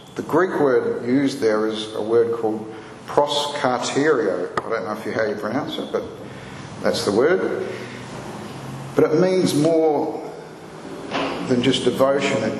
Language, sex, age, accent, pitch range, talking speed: English, male, 50-69, Australian, 115-145 Hz, 150 wpm